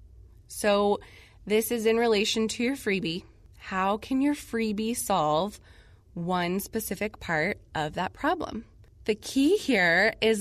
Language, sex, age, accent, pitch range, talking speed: English, female, 20-39, American, 175-225 Hz, 135 wpm